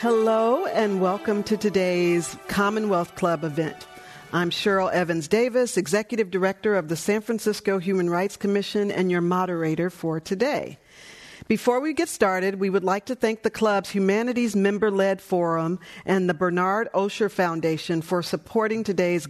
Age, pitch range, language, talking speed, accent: 40-59, 175-215 Hz, English, 145 wpm, American